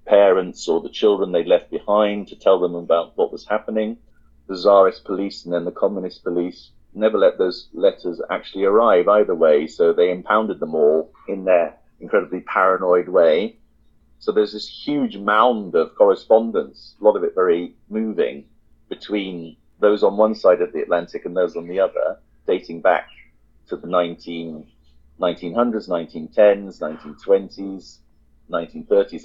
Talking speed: 150 wpm